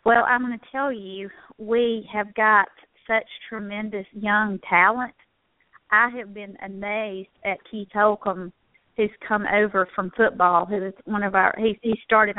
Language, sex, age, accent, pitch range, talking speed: English, female, 40-59, American, 190-215 Hz, 160 wpm